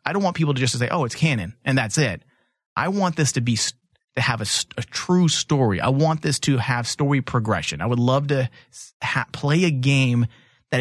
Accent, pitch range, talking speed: American, 120-145 Hz, 220 wpm